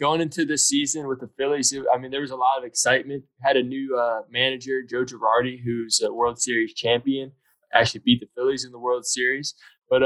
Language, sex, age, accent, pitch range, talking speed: English, male, 20-39, American, 120-135 Hz, 215 wpm